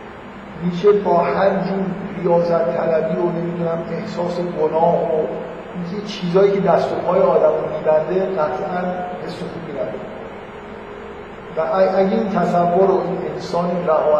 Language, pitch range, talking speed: Persian, 150-185 Hz, 130 wpm